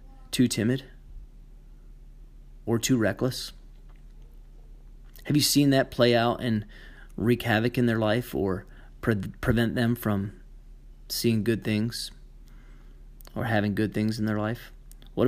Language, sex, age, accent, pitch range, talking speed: English, male, 30-49, American, 100-120 Hz, 125 wpm